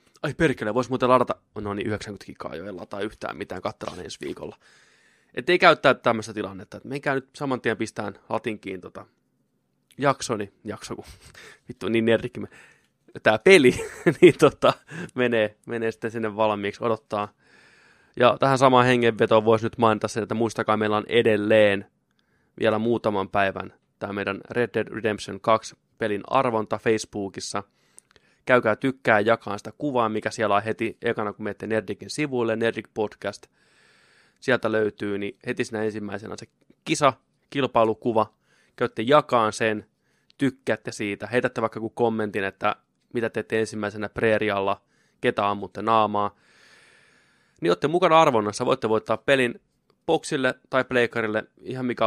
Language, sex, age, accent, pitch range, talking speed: Finnish, male, 20-39, native, 105-120 Hz, 145 wpm